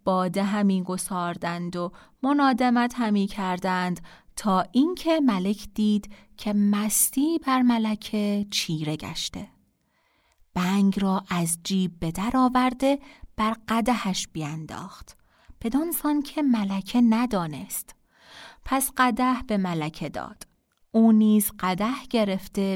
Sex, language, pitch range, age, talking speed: female, Persian, 195-250 Hz, 30-49, 105 wpm